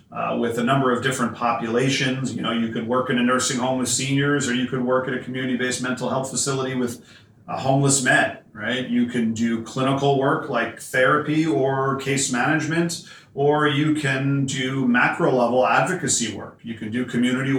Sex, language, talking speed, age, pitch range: male, English, 190 wpm, 40-59, 115-130 Hz